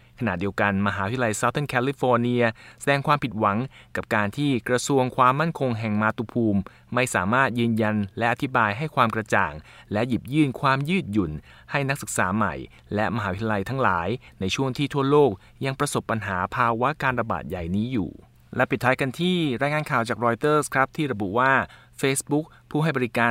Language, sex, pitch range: Thai, male, 110-140 Hz